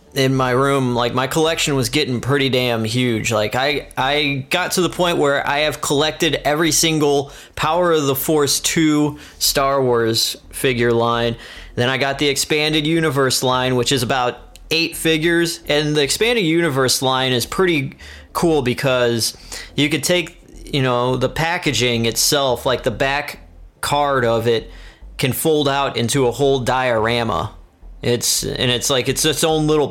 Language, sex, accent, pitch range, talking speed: English, male, American, 120-150 Hz, 165 wpm